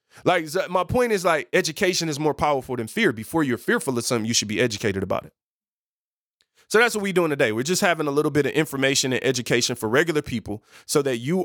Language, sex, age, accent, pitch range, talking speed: English, male, 20-39, American, 125-170 Hz, 230 wpm